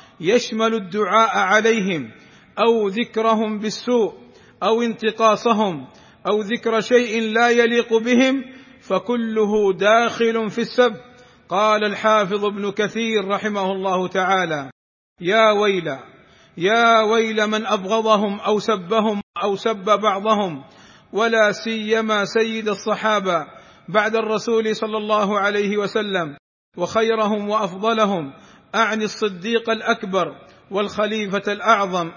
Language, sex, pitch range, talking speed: Arabic, male, 205-225 Hz, 100 wpm